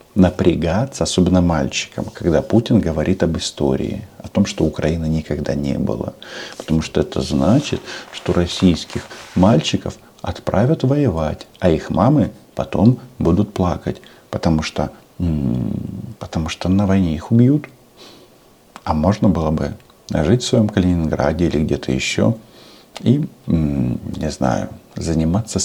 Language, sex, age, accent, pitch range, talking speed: Russian, male, 50-69, native, 80-110 Hz, 120 wpm